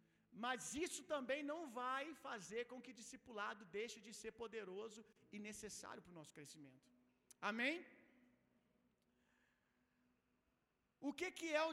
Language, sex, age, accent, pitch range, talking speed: Gujarati, male, 50-69, Brazilian, 205-300 Hz, 130 wpm